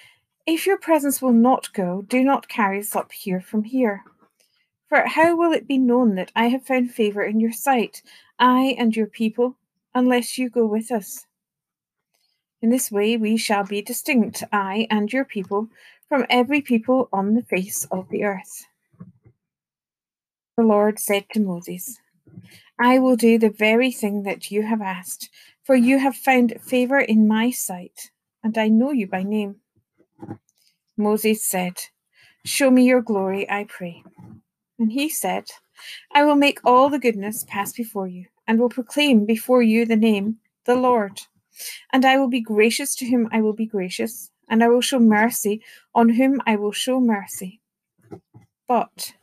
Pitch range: 205-250 Hz